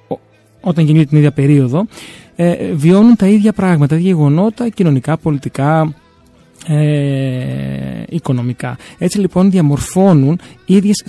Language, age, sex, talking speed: Greek, 20-39, male, 115 wpm